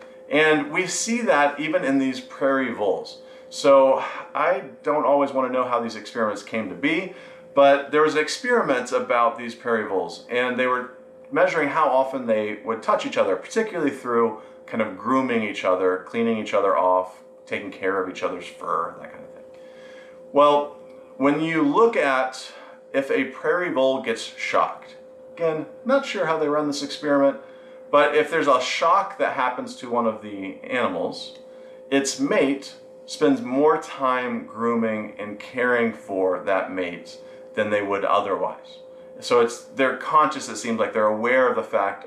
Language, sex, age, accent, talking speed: English, male, 40-59, American, 170 wpm